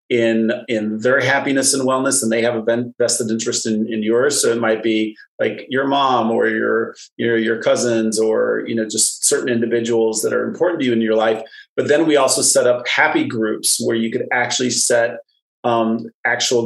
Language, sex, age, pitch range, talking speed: English, male, 30-49, 115-125 Hz, 205 wpm